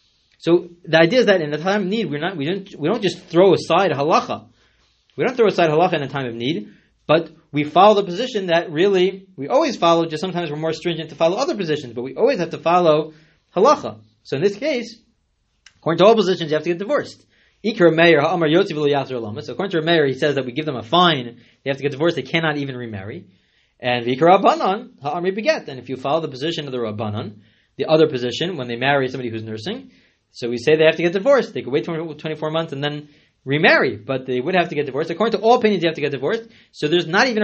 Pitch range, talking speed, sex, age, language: 150-215 Hz, 240 wpm, male, 30-49, English